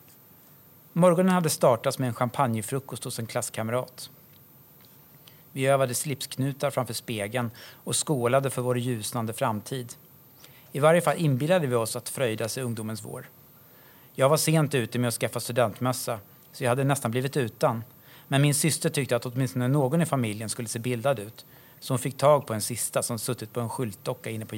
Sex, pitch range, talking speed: male, 120-145 Hz, 180 wpm